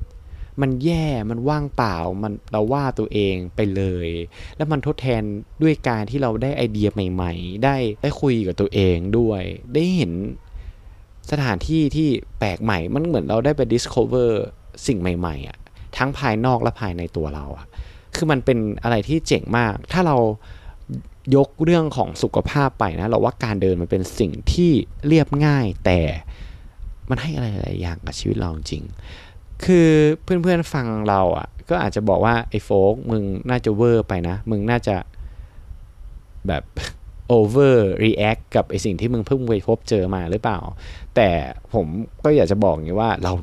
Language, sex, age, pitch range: Thai, male, 20-39, 90-120 Hz